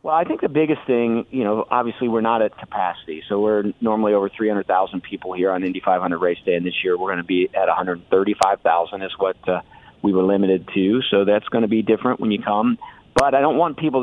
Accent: American